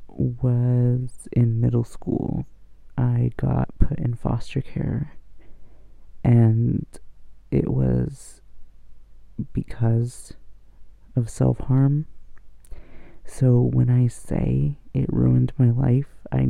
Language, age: English, 30-49